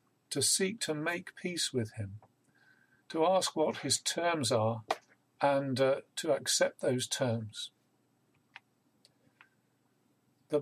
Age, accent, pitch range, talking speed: 50-69, British, 115-135 Hz, 115 wpm